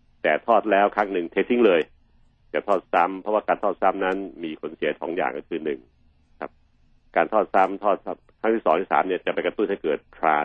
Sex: male